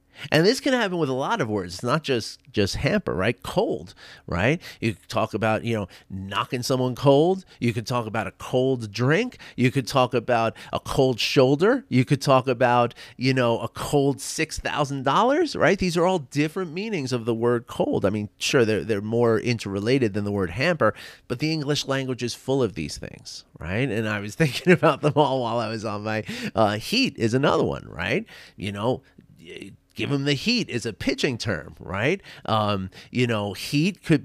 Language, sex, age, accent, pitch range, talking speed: English, male, 30-49, American, 115-155 Hz, 200 wpm